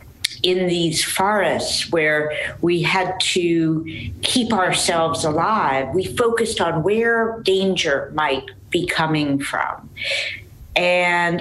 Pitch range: 155-200 Hz